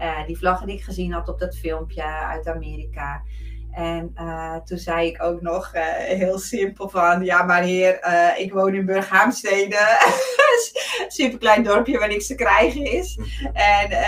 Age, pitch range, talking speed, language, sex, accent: 30-49, 160-195 Hz, 175 wpm, Dutch, female, Dutch